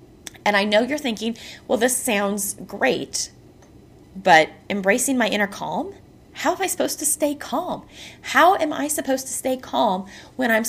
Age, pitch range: 30-49, 210-285 Hz